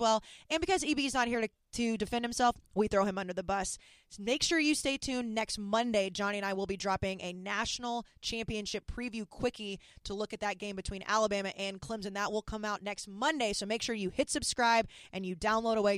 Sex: female